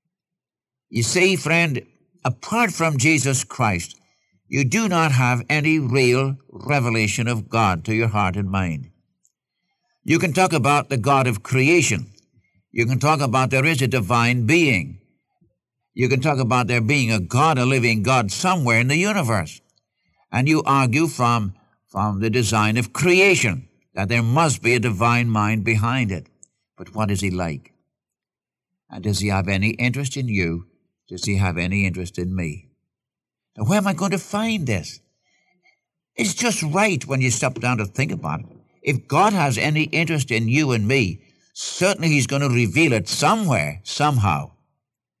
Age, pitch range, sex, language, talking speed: 60-79, 105-150 Hz, male, English, 170 wpm